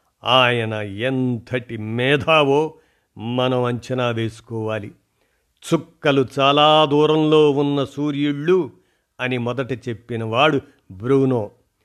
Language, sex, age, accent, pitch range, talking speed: Telugu, male, 50-69, native, 115-150 Hz, 80 wpm